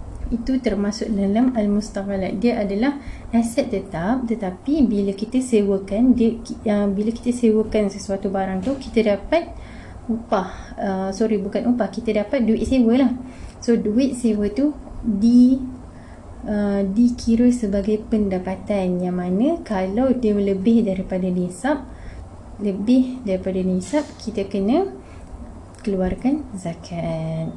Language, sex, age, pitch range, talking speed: English, female, 20-39, 190-235 Hz, 120 wpm